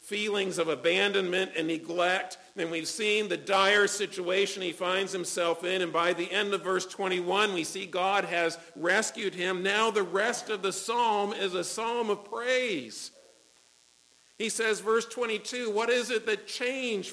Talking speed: 170 wpm